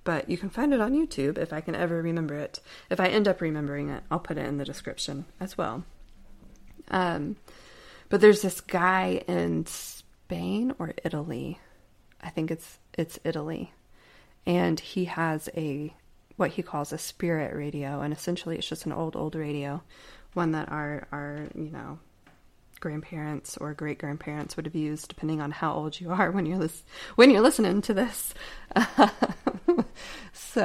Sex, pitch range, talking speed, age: female, 150-180 Hz, 170 wpm, 20-39